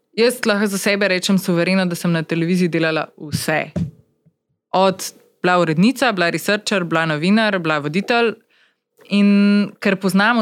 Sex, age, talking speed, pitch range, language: female, 20-39, 140 wpm, 170-215 Hz, Slovak